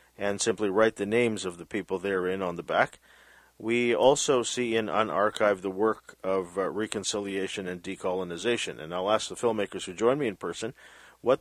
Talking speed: 185 wpm